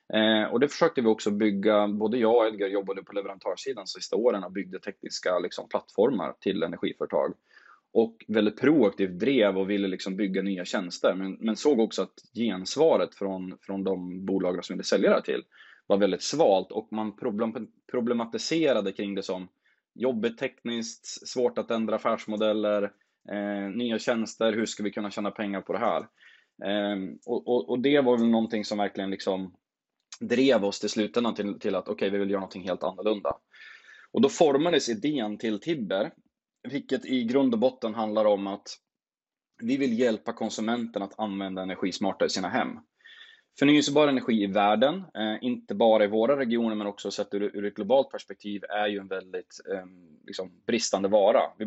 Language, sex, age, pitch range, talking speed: Swedish, male, 20-39, 100-115 Hz, 180 wpm